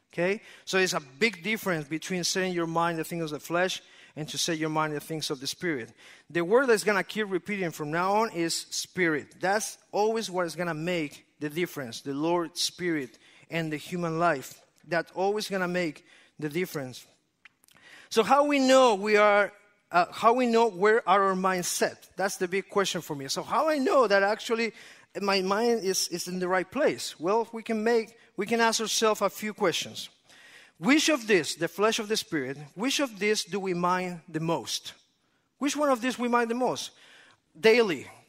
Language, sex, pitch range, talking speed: English, male, 170-225 Hz, 210 wpm